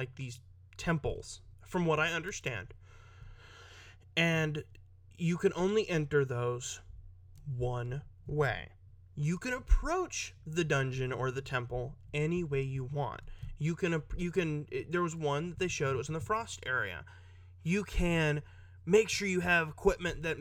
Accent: American